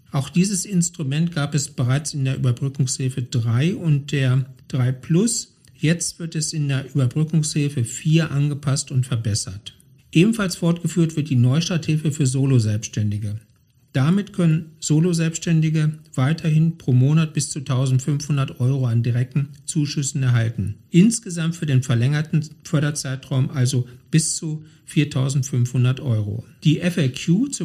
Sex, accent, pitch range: male, German, 130-160 Hz